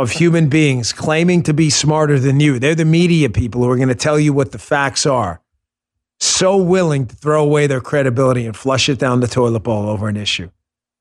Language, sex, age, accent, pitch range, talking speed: English, male, 40-59, American, 120-170 Hz, 220 wpm